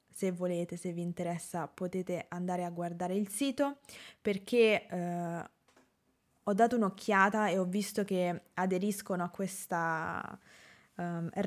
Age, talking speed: 20-39, 125 wpm